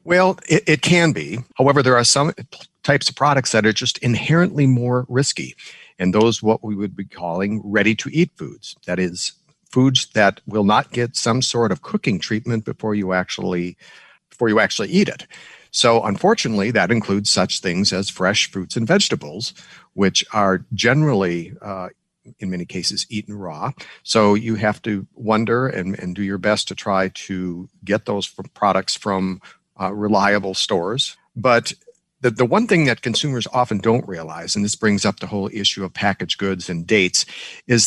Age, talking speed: 60-79, 175 wpm